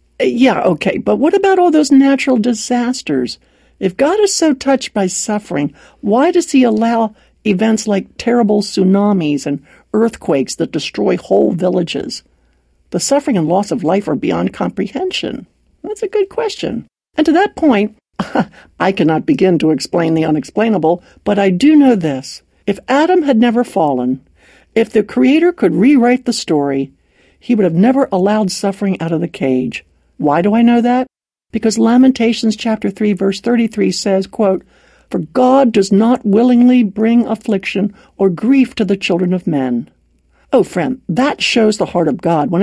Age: 60-79